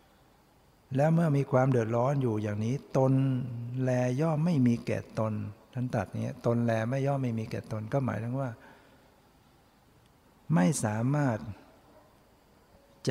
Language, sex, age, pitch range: Thai, male, 60-79, 110-130 Hz